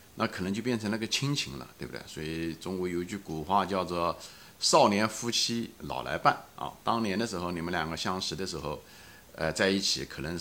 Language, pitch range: Chinese, 80-100 Hz